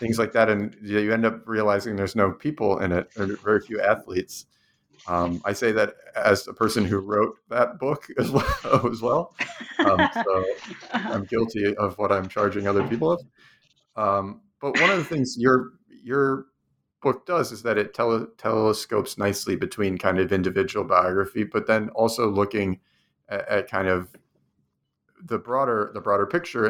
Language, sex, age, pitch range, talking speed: English, male, 30-49, 95-115 Hz, 175 wpm